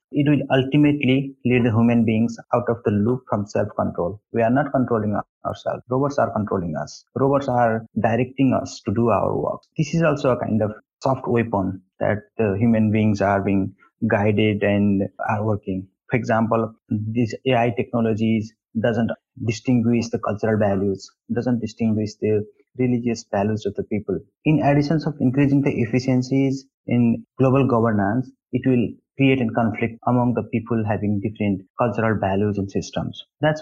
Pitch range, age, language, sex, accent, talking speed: 110-130 Hz, 30-49, English, male, Indian, 160 wpm